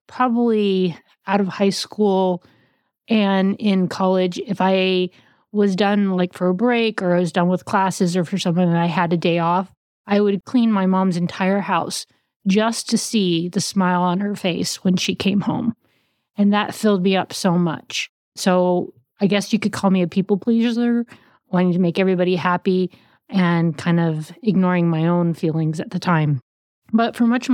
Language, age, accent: English, 30-49, American